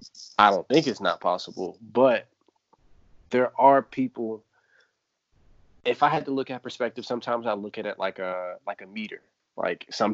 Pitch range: 95-120 Hz